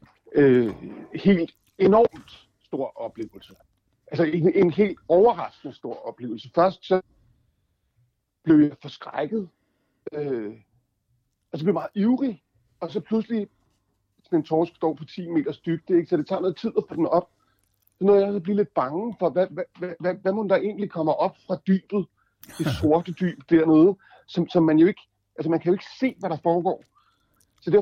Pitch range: 145-190 Hz